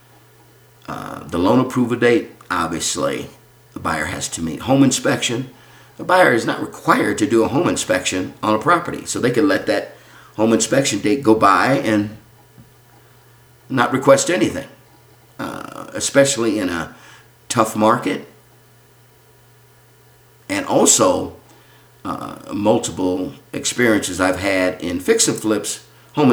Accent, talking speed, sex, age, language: American, 130 wpm, male, 50-69, English